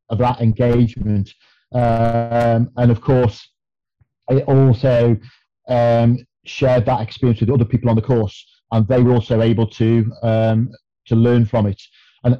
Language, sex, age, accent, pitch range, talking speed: English, male, 40-59, British, 115-125 Hz, 150 wpm